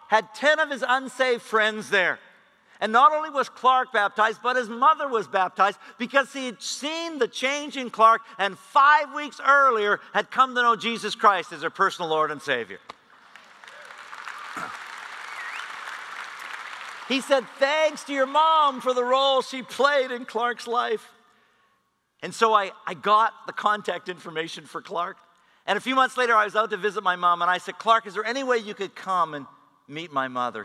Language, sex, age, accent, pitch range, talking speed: English, male, 50-69, American, 205-260 Hz, 180 wpm